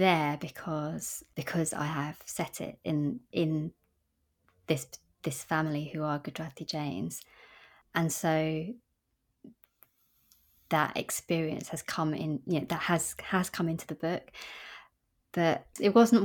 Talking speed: 130 wpm